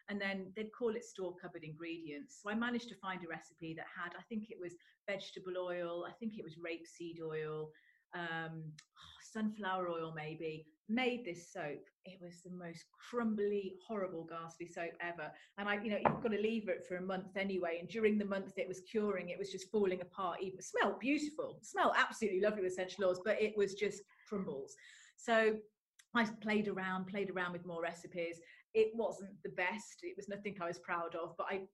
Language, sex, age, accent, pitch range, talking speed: English, female, 30-49, British, 170-220 Hz, 200 wpm